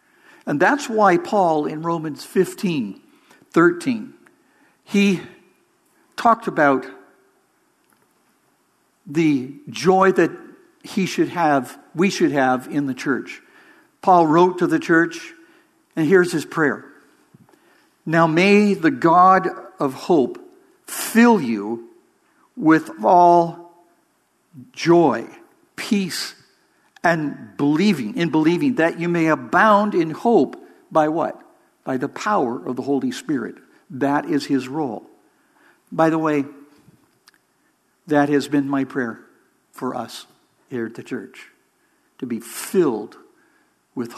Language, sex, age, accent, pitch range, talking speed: English, male, 60-79, American, 145-230 Hz, 115 wpm